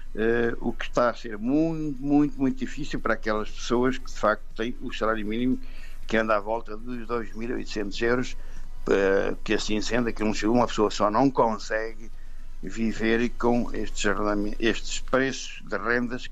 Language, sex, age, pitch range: Portuguese, male, 60-79, 105-120 Hz